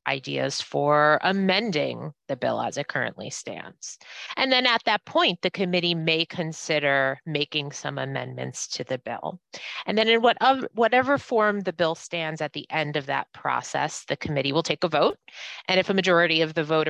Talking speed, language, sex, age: 180 wpm, English, female, 30-49